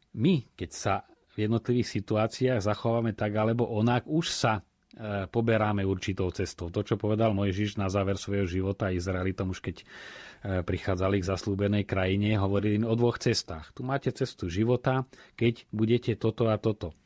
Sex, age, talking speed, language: male, 30-49, 155 wpm, Slovak